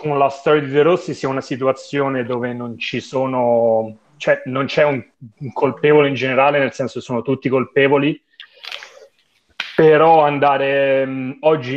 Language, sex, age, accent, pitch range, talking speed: Italian, male, 30-49, native, 120-140 Hz, 150 wpm